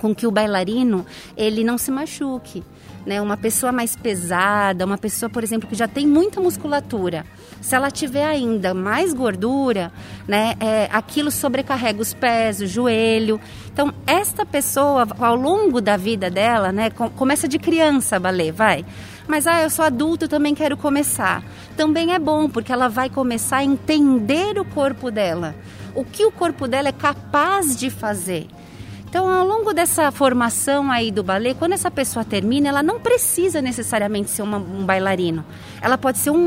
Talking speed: 170 wpm